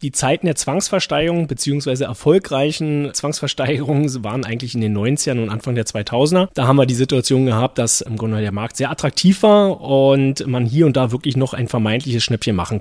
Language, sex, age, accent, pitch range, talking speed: German, male, 30-49, German, 110-140 Hz, 190 wpm